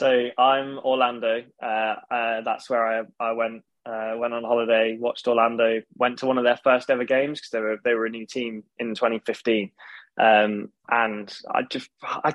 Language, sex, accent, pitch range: English, male, British, 115-130 Hz